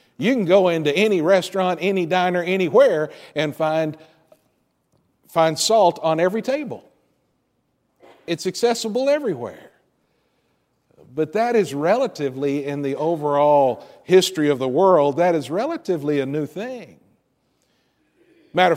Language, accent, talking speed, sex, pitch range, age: English, American, 120 wpm, male, 160-210 Hz, 50-69